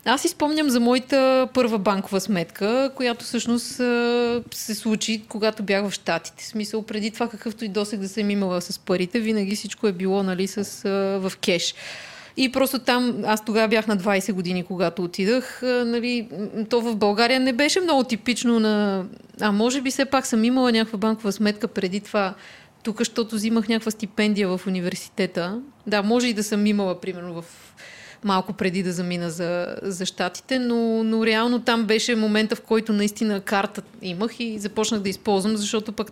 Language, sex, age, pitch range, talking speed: Bulgarian, female, 30-49, 195-230 Hz, 175 wpm